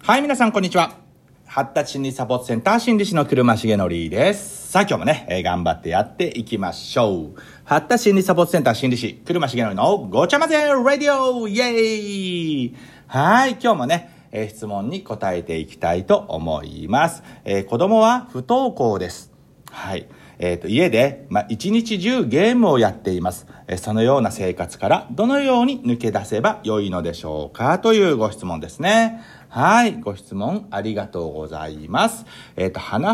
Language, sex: Japanese, male